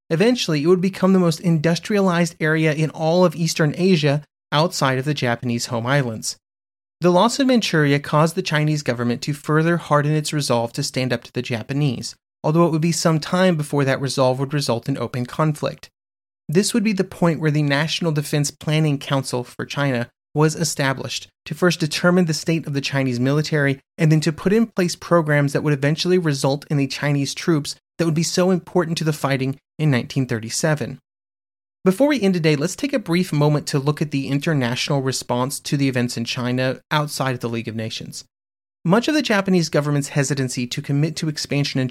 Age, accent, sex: 30-49, American, male